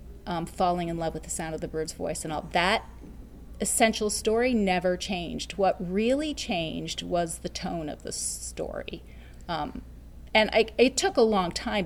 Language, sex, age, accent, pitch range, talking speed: English, female, 30-49, American, 155-210 Hz, 175 wpm